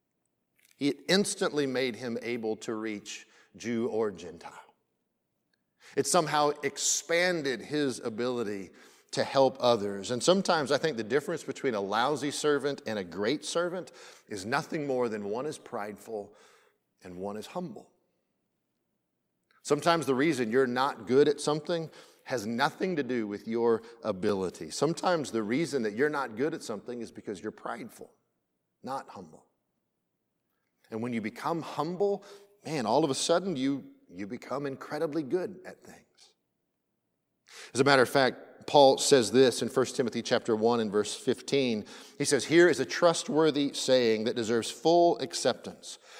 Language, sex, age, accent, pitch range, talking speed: English, male, 40-59, American, 120-175 Hz, 150 wpm